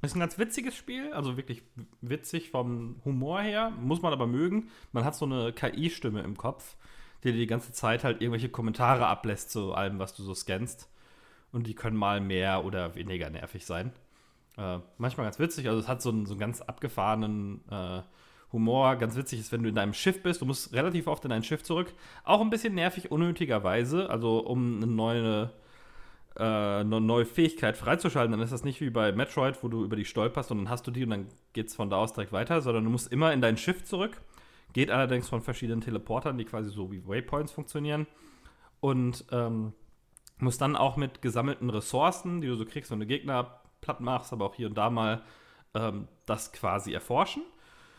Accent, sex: German, male